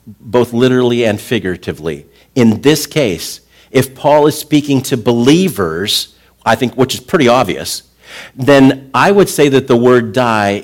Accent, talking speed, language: American, 150 wpm, English